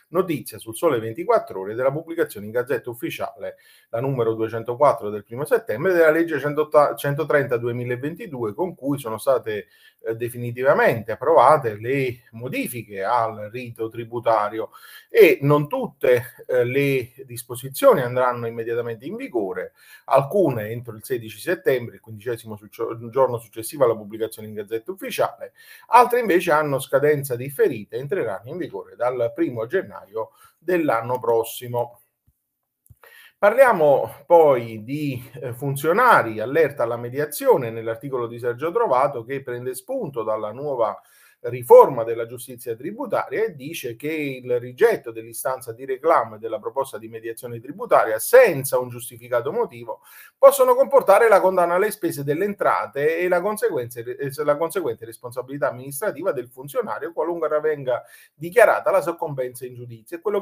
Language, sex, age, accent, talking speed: Italian, male, 30-49, native, 130 wpm